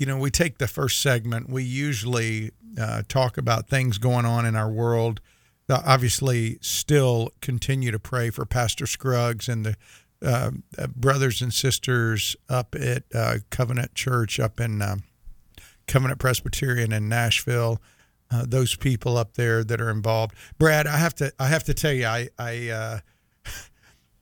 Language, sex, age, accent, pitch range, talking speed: English, male, 50-69, American, 115-135 Hz, 160 wpm